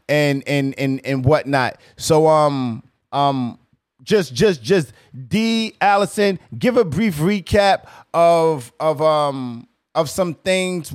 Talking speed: 125 wpm